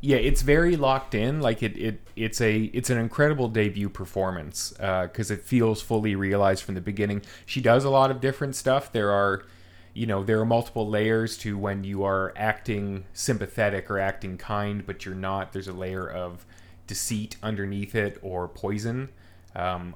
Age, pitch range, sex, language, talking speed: 30-49, 95-115 Hz, male, English, 185 wpm